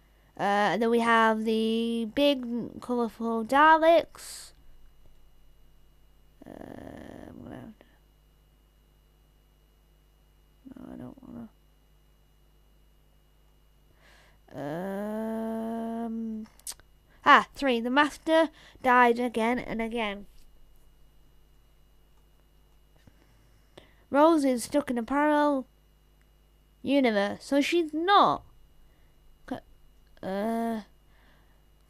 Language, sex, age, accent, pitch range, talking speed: English, female, 20-39, British, 220-275 Hz, 65 wpm